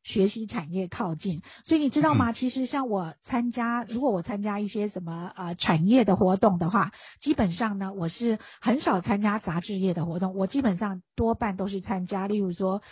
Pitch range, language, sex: 185-255 Hz, Chinese, female